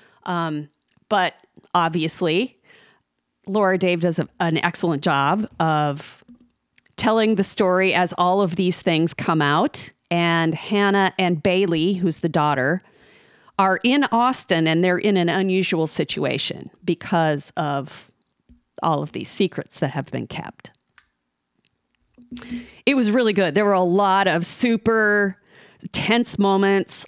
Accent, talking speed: American, 130 wpm